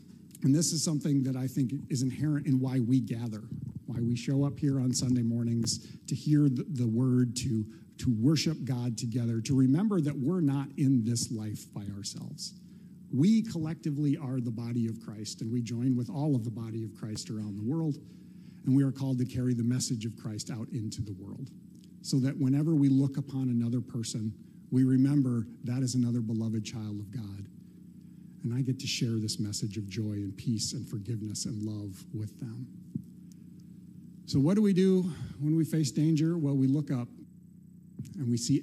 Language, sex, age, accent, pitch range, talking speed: English, male, 50-69, American, 115-150 Hz, 195 wpm